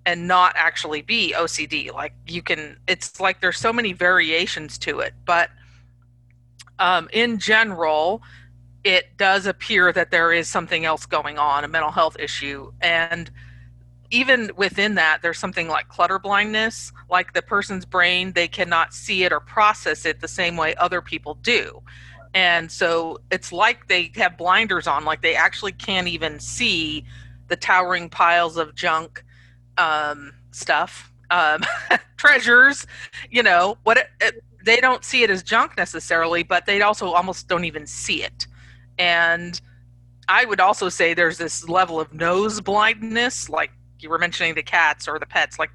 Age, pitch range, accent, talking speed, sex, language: 40-59, 135-185 Hz, American, 160 wpm, female, English